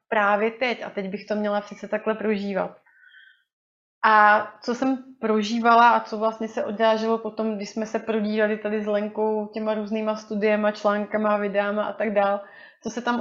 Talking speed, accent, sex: 175 wpm, native, female